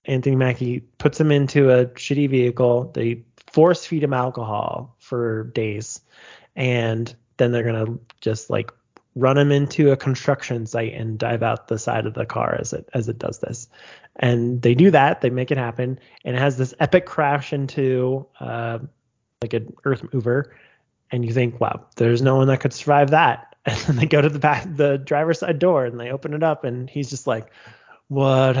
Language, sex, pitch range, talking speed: English, male, 120-145 Hz, 195 wpm